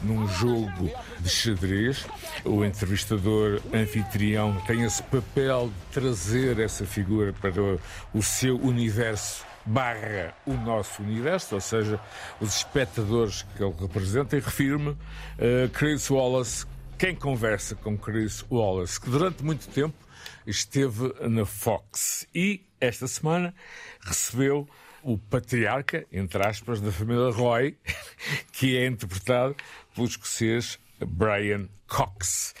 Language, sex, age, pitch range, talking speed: Portuguese, male, 50-69, 105-135 Hz, 115 wpm